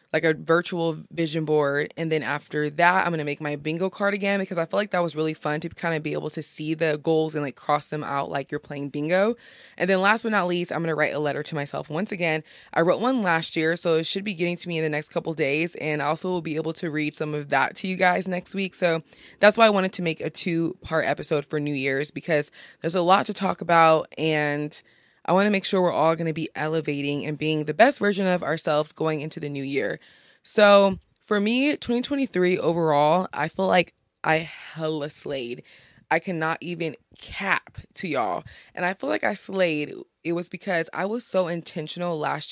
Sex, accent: female, American